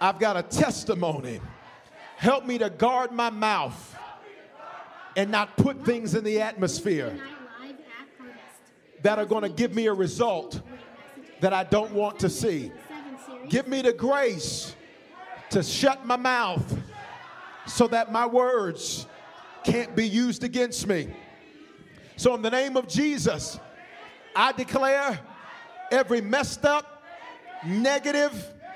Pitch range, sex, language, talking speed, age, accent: 230-295 Hz, male, English, 125 wpm, 40-59, American